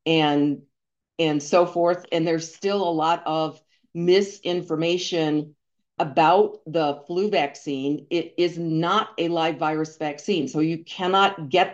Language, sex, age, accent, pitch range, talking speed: English, female, 50-69, American, 160-205 Hz, 135 wpm